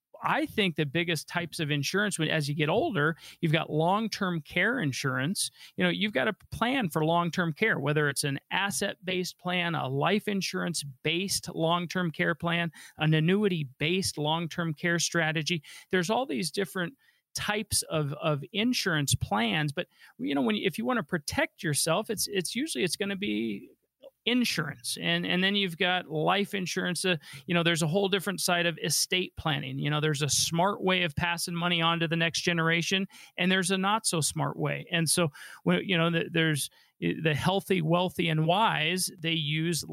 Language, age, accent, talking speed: English, 40-59, American, 190 wpm